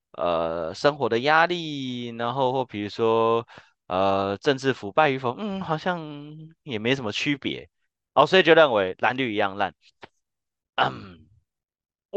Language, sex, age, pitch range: Chinese, male, 30-49, 105-140 Hz